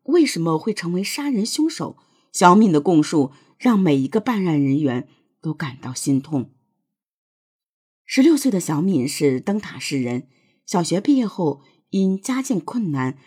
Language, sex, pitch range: Chinese, female, 145-210 Hz